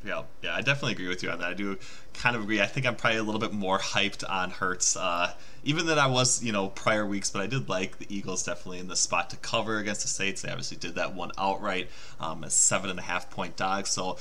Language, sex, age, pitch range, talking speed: English, male, 20-39, 100-130 Hz, 270 wpm